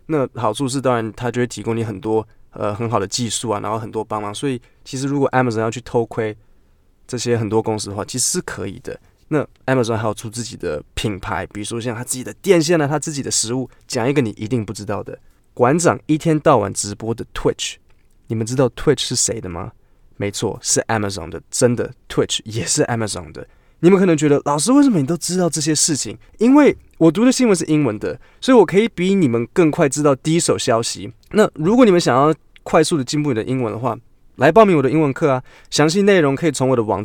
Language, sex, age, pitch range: Chinese, male, 20-39, 115-160 Hz